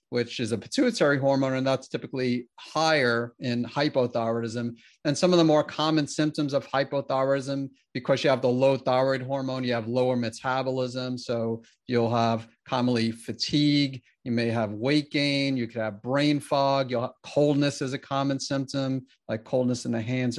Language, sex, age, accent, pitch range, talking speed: English, male, 40-59, American, 120-145 Hz, 170 wpm